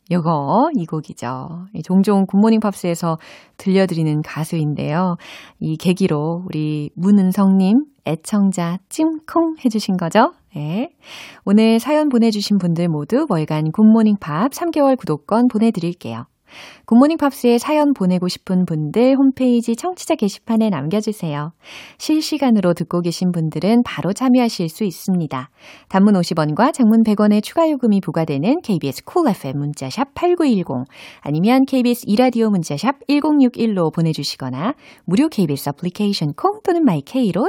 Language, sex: Korean, female